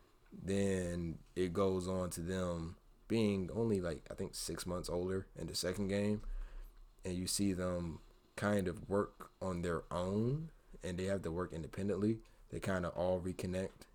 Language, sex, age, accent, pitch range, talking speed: English, male, 20-39, American, 85-100 Hz, 170 wpm